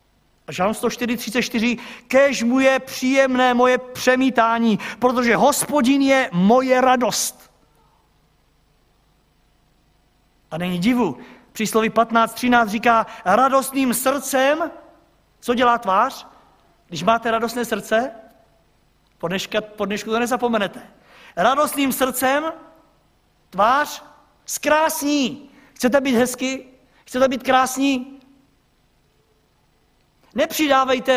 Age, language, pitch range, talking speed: 50-69, Czech, 225-270 Hz, 85 wpm